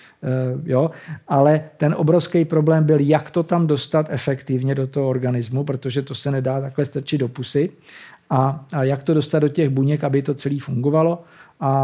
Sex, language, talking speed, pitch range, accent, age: male, Czech, 180 wpm, 135-150 Hz, native, 50-69